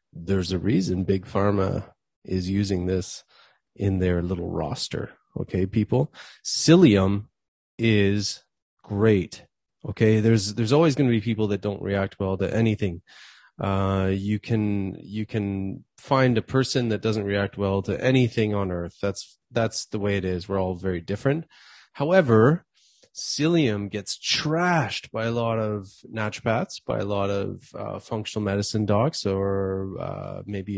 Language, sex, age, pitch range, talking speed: English, male, 30-49, 100-115 Hz, 150 wpm